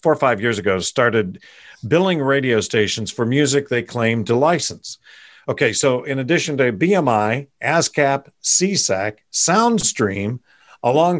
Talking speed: 135 wpm